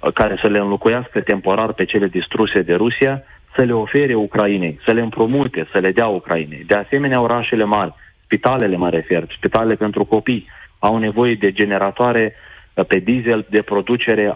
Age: 30-49